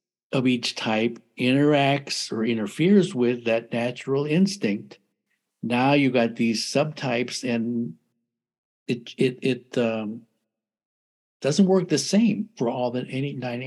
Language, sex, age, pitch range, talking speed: English, male, 60-79, 115-140 Hz, 125 wpm